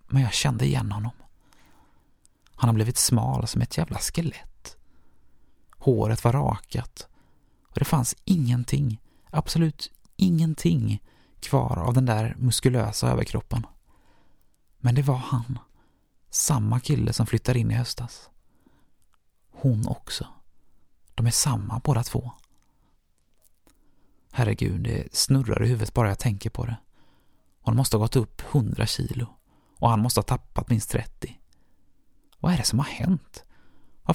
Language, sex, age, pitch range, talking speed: Swedish, male, 30-49, 95-125 Hz, 135 wpm